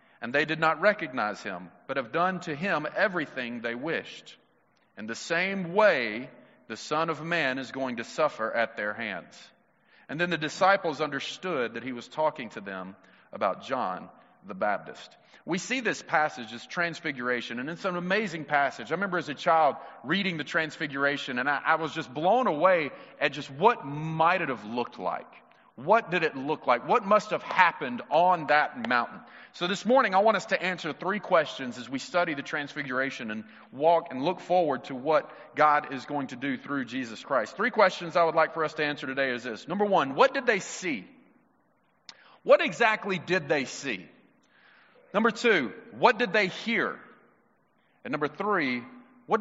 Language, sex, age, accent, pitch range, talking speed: English, male, 40-59, American, 145-200 Hz, 185 wpm